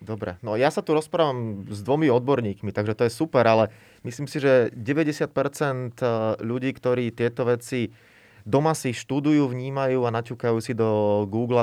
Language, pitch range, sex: Slovak, 115-145 Hz, male